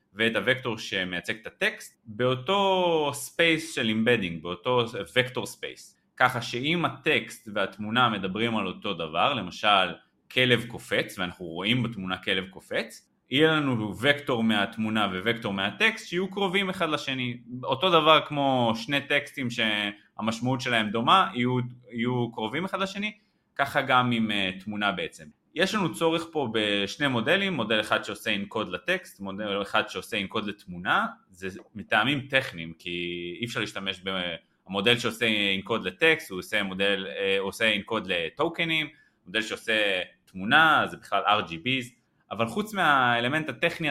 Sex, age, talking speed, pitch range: male, 30-49, 135 wpm, 110-145 Hz